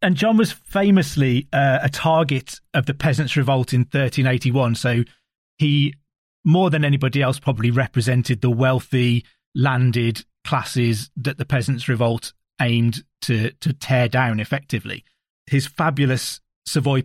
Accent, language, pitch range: British, English, 130-150 Hz